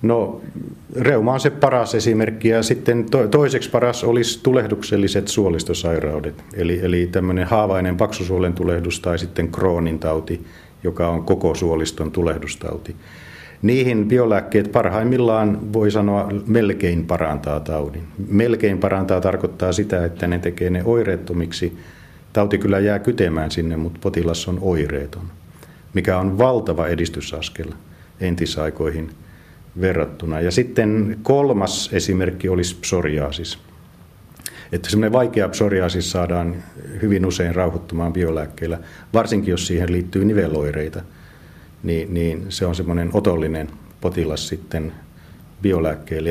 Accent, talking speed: native, 115 wpm